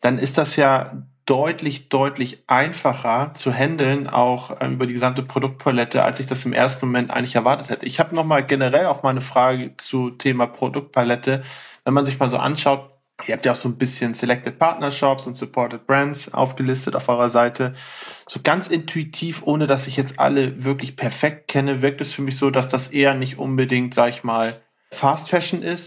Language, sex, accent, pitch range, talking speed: German, male, German, 125-140 Hz, 190 wpm